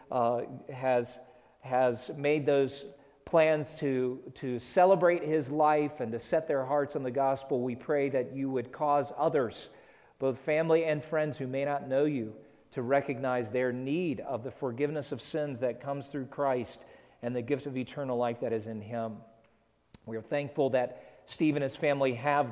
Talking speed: 180 wpm